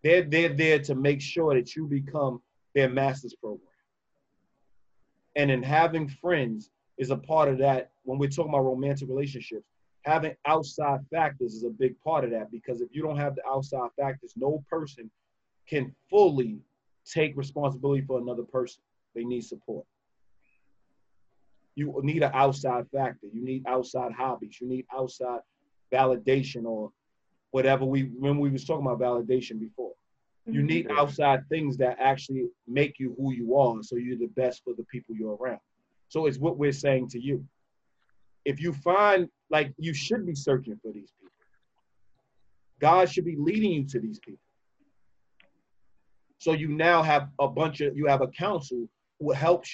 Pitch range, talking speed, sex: 125-145 Hz, 165 wpm, male